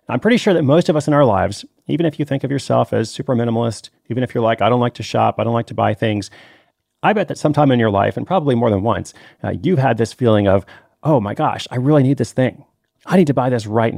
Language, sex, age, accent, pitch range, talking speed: English, male, 30-49, American, 105-130 Hz, 285 wpm